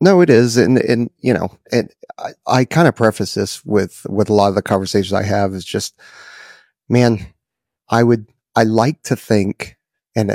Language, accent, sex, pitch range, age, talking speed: English, American, male, 100-115 Hz, 30-49, 190 wpm